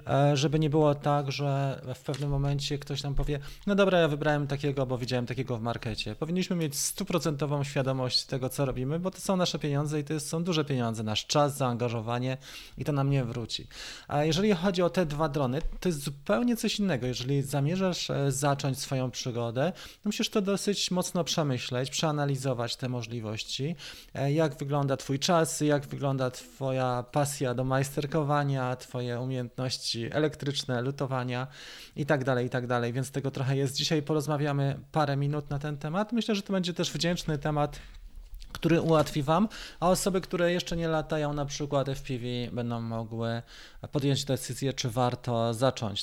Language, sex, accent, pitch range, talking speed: Polish, male, native, 125-155 Hz, 165 wpm